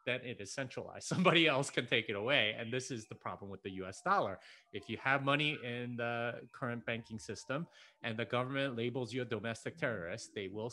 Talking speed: 215 wpm